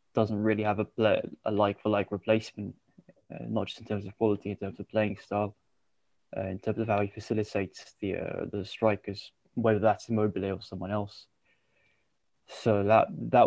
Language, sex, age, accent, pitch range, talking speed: English, male, 20-39, British, 100-115 Hz, 185 wpm